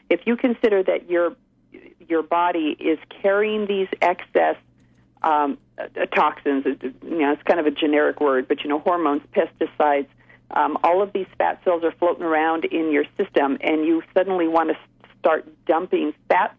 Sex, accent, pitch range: female, American, 155-195 Hz